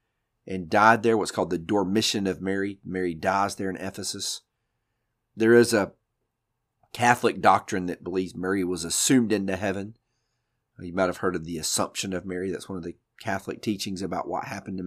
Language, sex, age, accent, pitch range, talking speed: English, male, 40-59, American, 95-115 Hz, 180 wpm